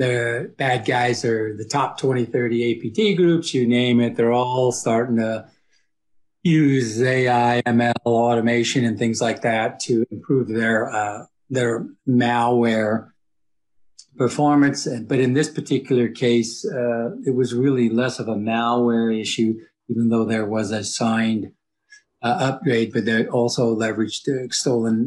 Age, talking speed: 50-69, 140 wpm